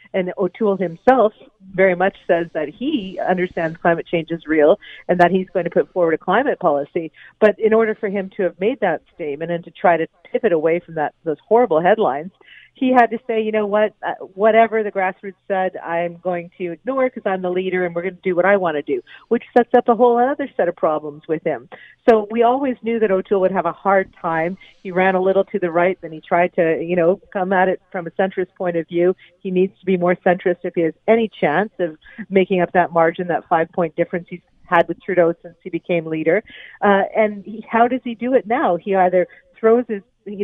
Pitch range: 175-225 Hz